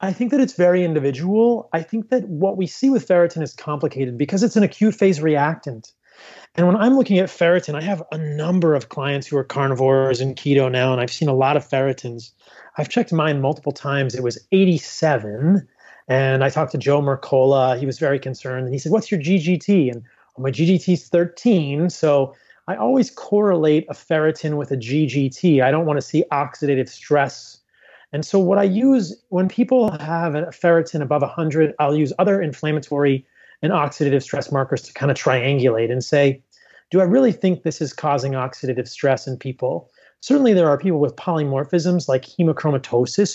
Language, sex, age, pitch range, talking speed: English, male, 30-49, 135-180 Hz, 190 wpm